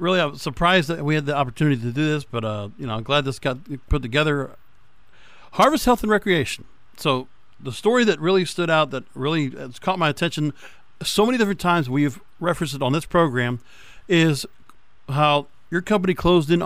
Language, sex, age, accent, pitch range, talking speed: English, male, 50-69, American, 130-175 Hz, 200 wpm